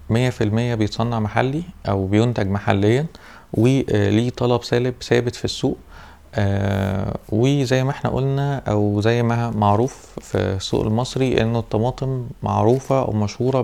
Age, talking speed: 20-39, 130 wpm